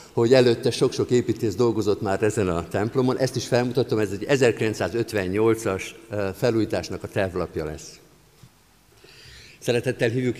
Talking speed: 120 wpm